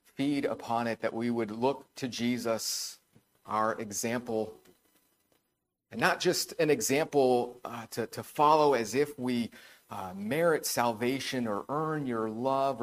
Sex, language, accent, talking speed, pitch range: male, English, American, 135 wpm, 110-130 Hz